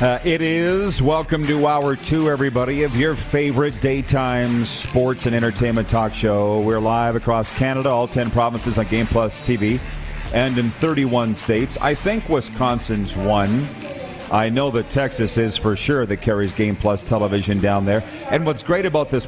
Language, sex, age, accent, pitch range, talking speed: English, male, 40-59, American, 110-140 Hz, 170 wpm